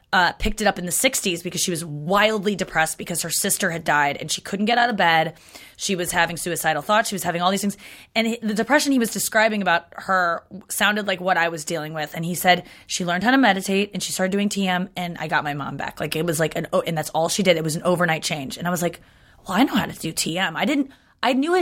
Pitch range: 170-220 Hz